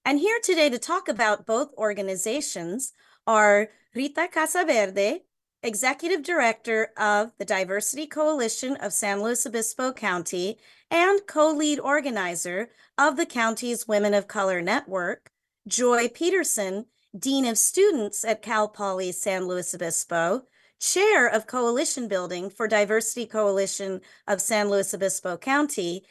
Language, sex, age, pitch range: English, female, 30-49, 195-275 Hz